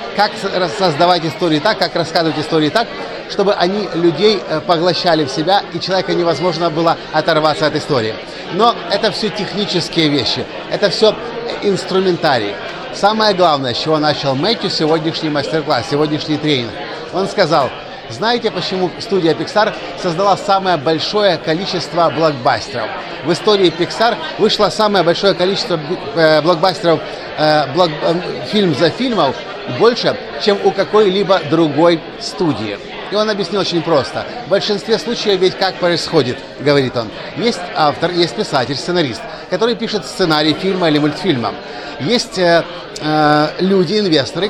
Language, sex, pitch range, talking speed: Russian, male, 155-200 Hz, 130 wpm